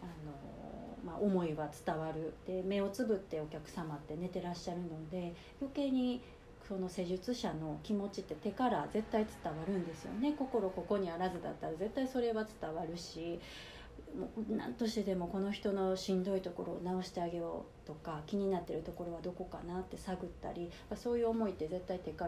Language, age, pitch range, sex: Japanese, 30-49, 175-225 Hz, female